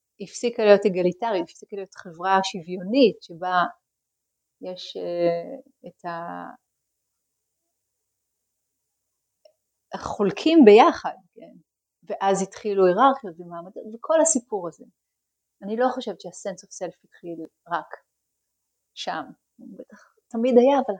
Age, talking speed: 30-49, 95 wpm